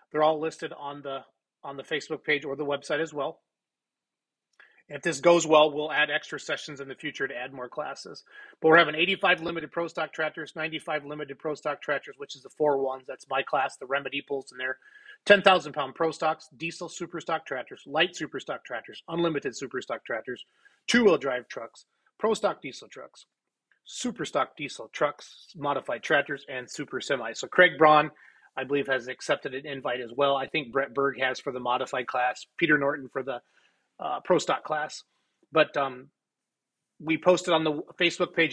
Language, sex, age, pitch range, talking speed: English, male, 30-49, 140-165 Hz, 175 wpm